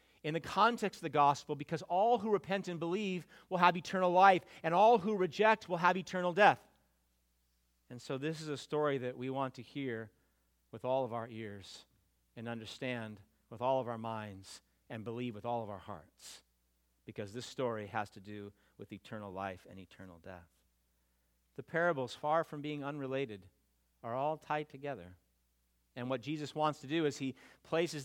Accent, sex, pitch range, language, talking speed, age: American, male, 115-175 Hz, English, 180 wpm, 40-59